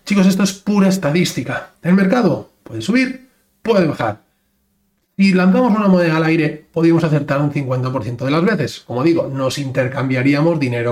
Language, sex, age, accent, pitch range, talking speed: Spanish, male, 40-59, Spanish, 145-190 Hz, 160 wpm